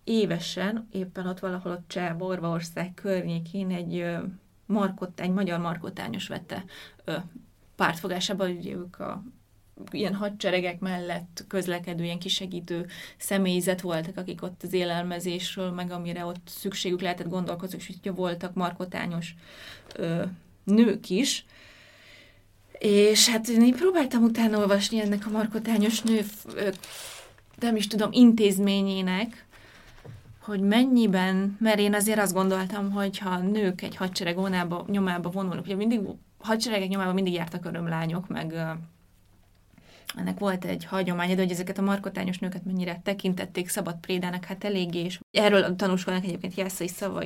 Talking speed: 130 wpm